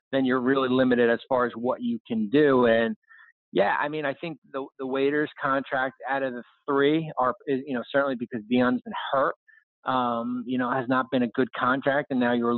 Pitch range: 125-145 Hz